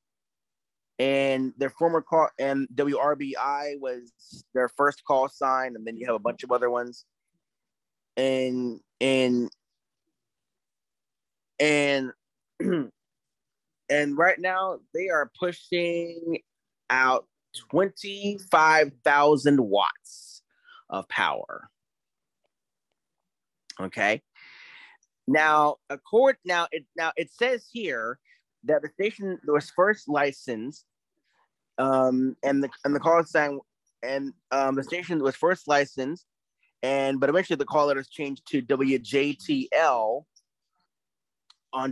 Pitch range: 130-155 Hz